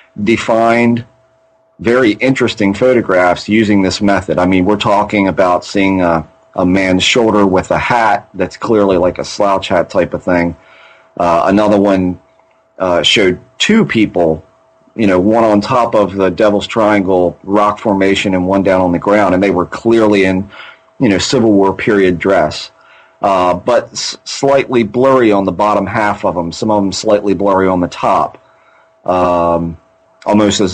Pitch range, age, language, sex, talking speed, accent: 95-120 Hz, 30-49, English, male, 170 wpm, American